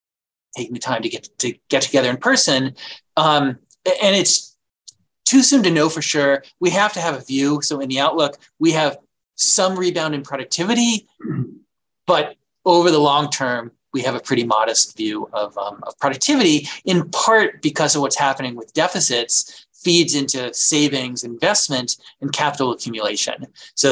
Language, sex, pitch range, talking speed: English, male, 130-175 Hz, 165 wpm